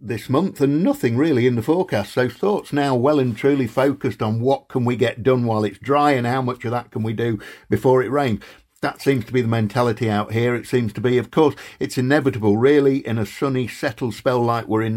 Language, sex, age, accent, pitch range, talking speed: English, male, 50-69, British, 105-135 Hz, 240 wpm